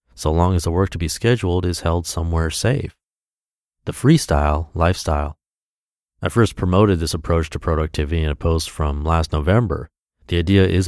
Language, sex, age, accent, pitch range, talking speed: English, male, 30-49, American, 85-115 Hz, 170 wpm